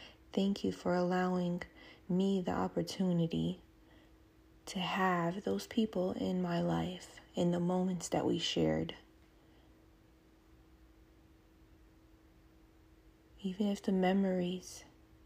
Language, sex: English, female